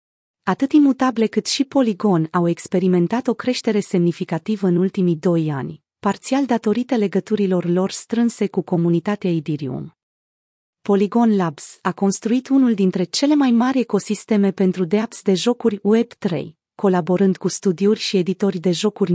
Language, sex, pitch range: Romanian, female, 180-225 Hz